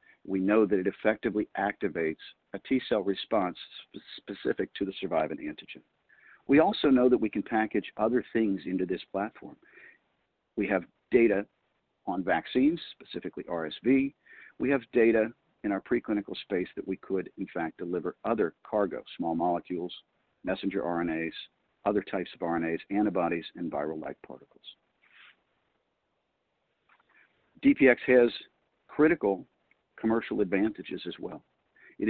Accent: American